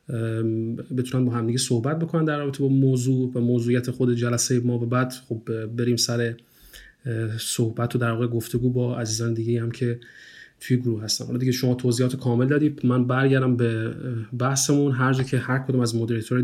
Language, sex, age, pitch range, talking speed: Persian, male, 30-49, 120-130 Hz, 185 wpm